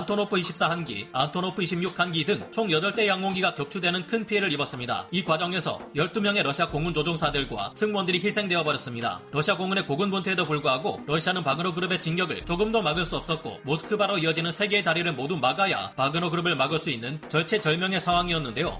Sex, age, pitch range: male, 30-49, 155-190 Hz